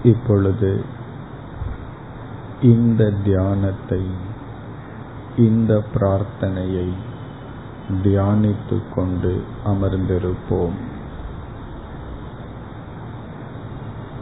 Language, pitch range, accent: Tamil, 100-125 Hz, native